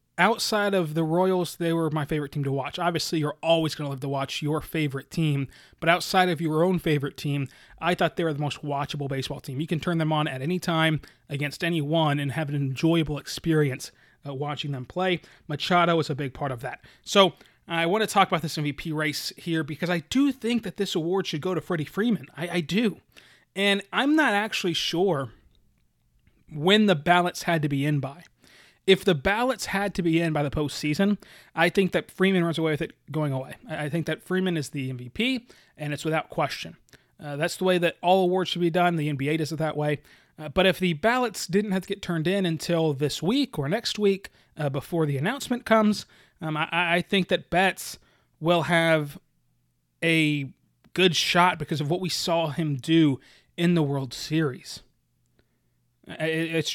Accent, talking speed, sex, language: American, 205 wpm, male, English